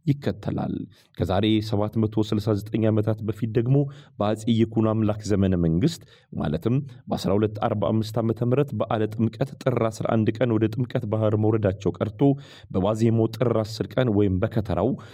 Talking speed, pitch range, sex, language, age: 115 wpm, 100-115 Hz, male, Amharic, 30-49